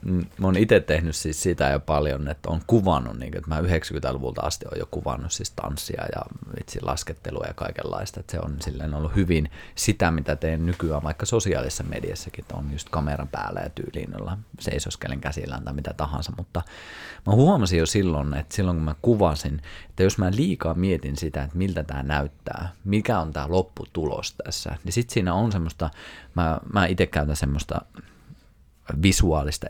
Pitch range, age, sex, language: 75-100 Hz, 30-49, male, Finnish